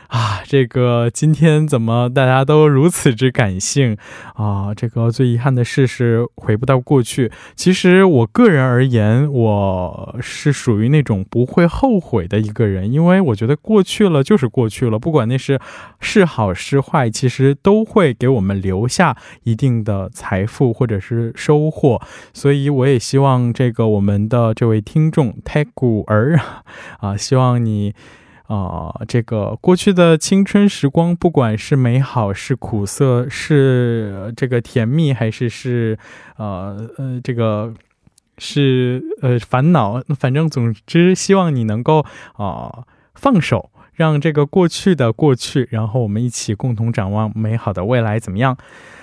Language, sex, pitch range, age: Korean, male, 115-150 Hz, 20-39